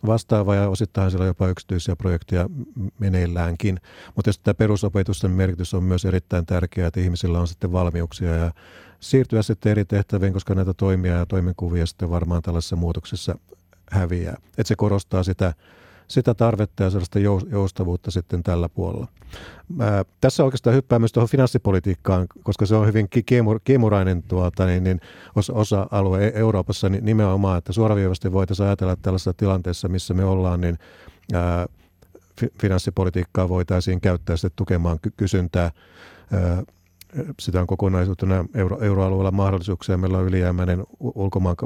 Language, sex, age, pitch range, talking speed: Finnish, male, 50-69, 90-105 Hz, 135 wpm